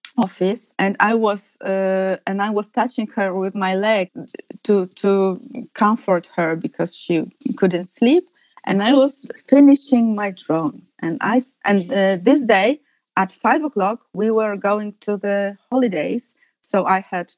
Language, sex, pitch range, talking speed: English, female, 190-230 Hz, 155 wpm